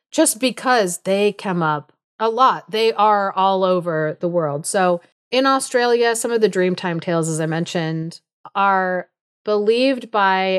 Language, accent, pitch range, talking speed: English, American, 170-215 Hz, 155 wpm